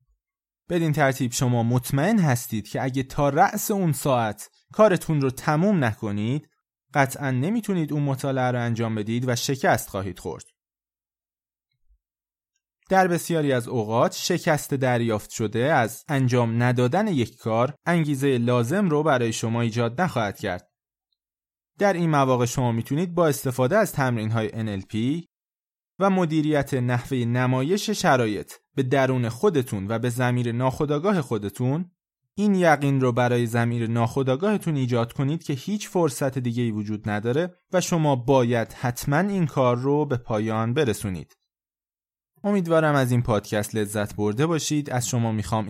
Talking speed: 135 wpm